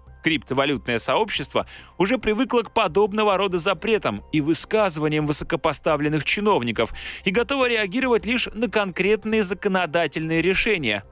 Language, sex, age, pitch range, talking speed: Russian, male, 20-39, 140-200 Hz, 110 wpm